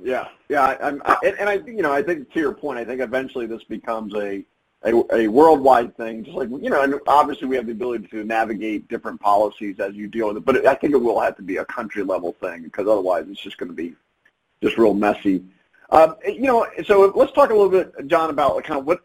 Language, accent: English, American